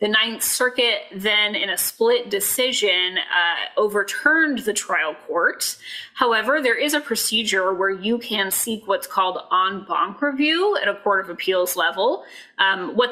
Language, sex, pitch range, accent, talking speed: English, female, 190-245 Hz, American, 160 wpm